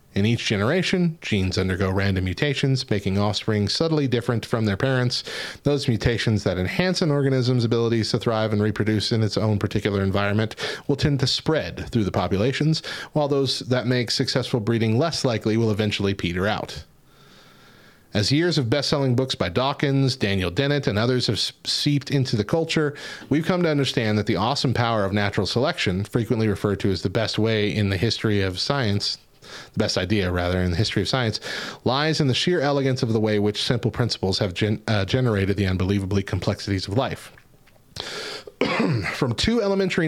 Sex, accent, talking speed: male, American, 180 wpm